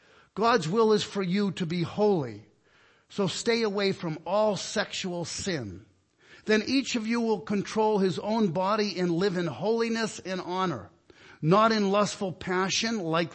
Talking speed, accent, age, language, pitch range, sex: 155 wpm, American, 50-69, English, 160-210 Hz, male